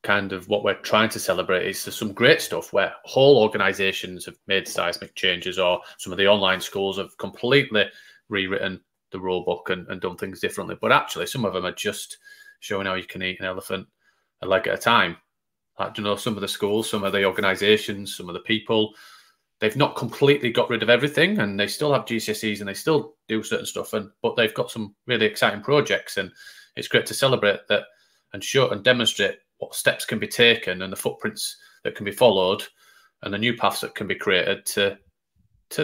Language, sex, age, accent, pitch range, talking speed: English, male, 30-49, British, 100-115 Hz, 215 wpm